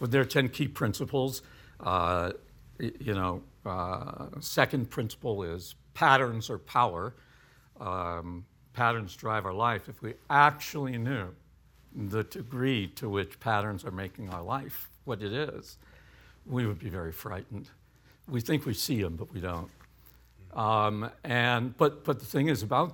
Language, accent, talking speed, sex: English, American, 155 wpm, male